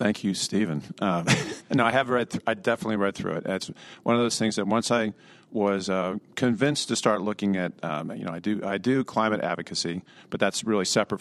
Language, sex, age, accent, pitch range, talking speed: English, male, 50-69, American, 90-110 Hz, 225 wpm